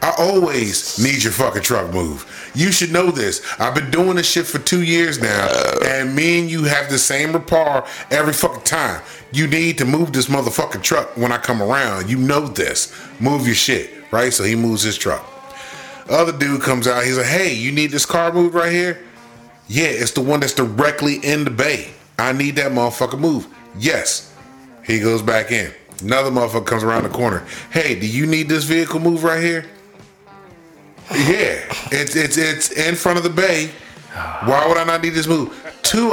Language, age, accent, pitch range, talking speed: English, 30-49, American, 120-165 Hz, 200 wpm